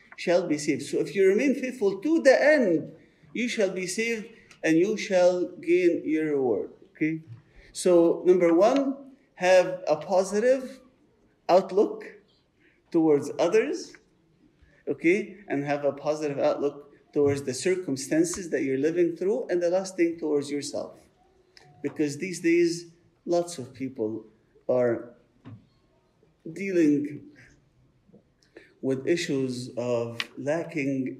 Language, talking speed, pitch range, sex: English, 120 wpm, 130-185 Hz, male